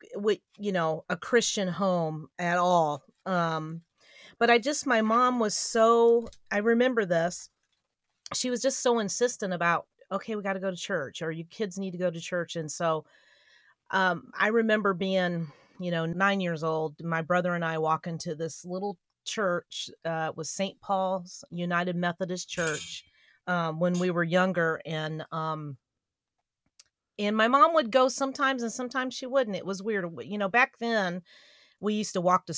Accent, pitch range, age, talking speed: American, 170-210 Hz, 40-59, 175 wpm